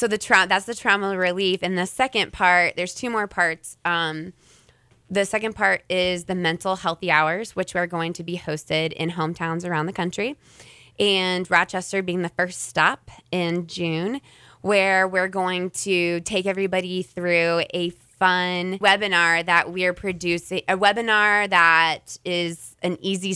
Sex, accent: female, American